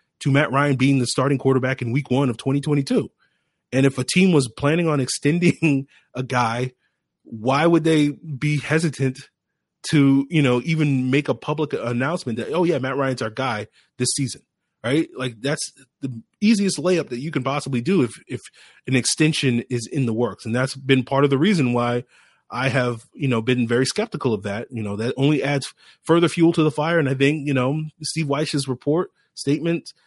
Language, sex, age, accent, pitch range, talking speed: English, male, 30-49, American, 120-150 Hz, 200 wpm